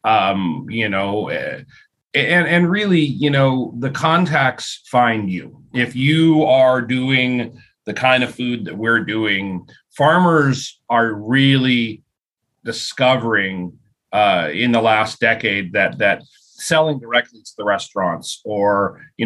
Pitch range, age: 115-140 Hz, 30-49